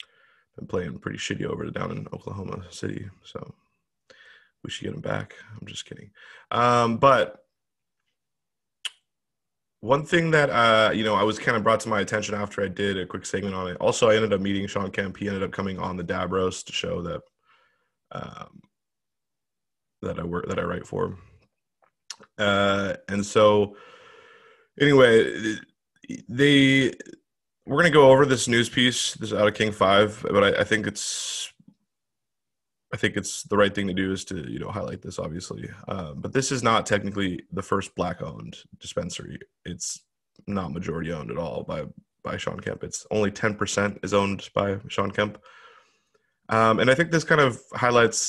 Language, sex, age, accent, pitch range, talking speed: English, male, 20-39, American, 100-125 Hz, 175 wpm